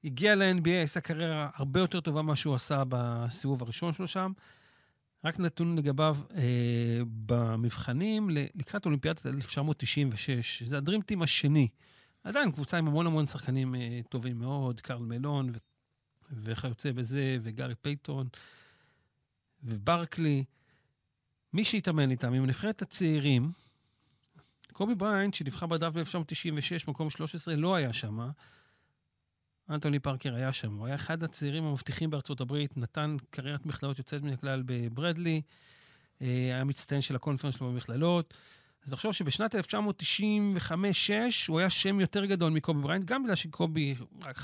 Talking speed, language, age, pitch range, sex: 130 wpm, Hebrew, 40-59, 130-170 Hz, male